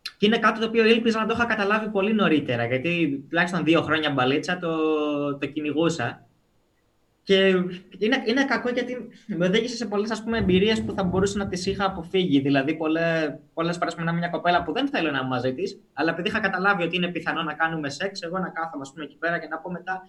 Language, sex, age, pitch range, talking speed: Greek, male, 20-39, 145-190 Hz, 210 wpm